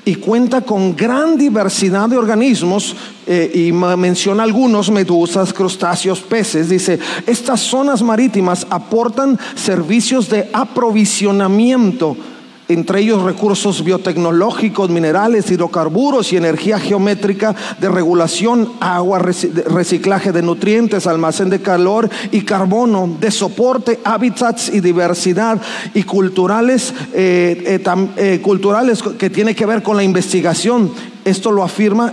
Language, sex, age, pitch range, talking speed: Spanish, male, 40-59, 180-225 Hz, 120 wpm